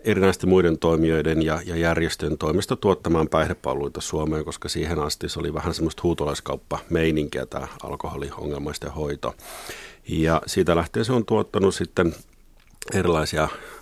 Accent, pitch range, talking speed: native, 75-90 Hz, 130 wpm